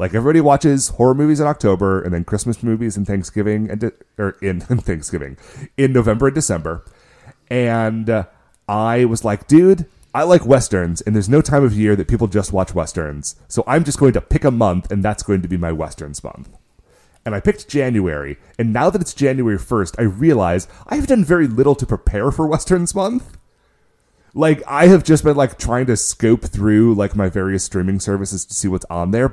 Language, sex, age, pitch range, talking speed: English, male, 30-49, 95-135 Hz, 200 wpm